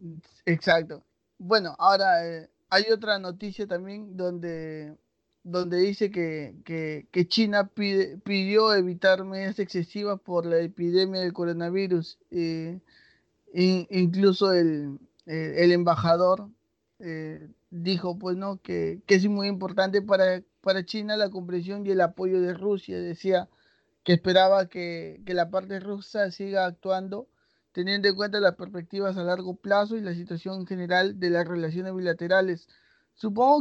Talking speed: 140 wpm